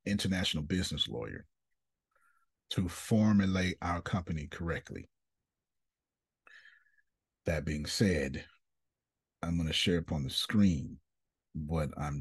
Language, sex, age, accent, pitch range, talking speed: English, male, 40-59, American, 85-110 Hz, 105 wpm